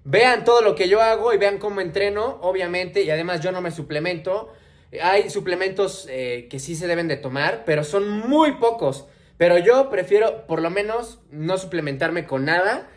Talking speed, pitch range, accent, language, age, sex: 185 wpm, 150-190 Hz, Mexican, English, 20-39, male